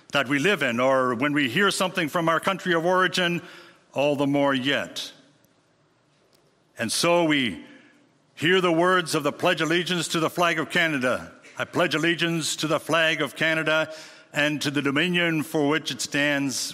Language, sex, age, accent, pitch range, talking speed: English, male, 60-79, American, 145-185 Hz, 180 wpm